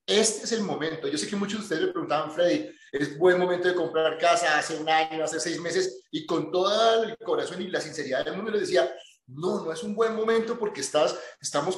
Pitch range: 160-210 Hz